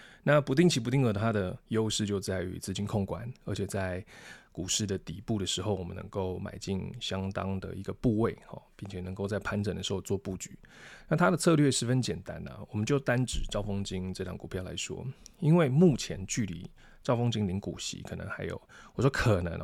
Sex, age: male, 20-39